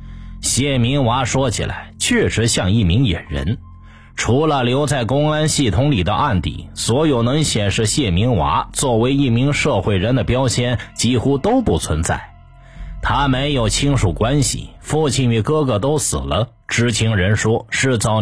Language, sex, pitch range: Chinese, male, 105-135 Hz